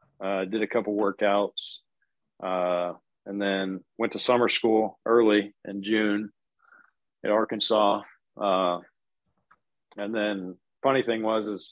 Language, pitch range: English, 95-110 Hz